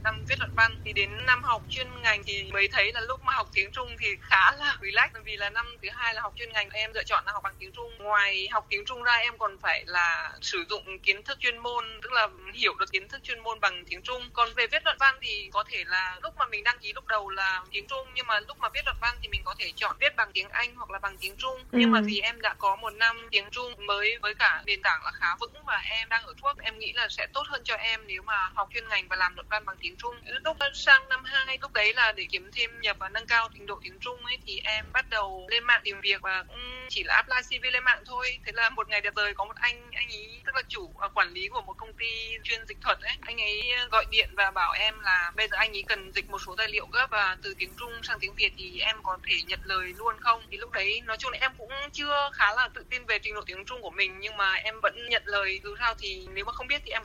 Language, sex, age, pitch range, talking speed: Vietnamese, female, 20-39, 205-255 Hz, 295 wpm